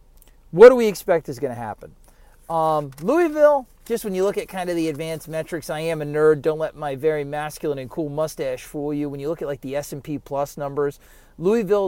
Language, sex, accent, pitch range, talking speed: English, male, American, 140-180 Hz, 225 wpm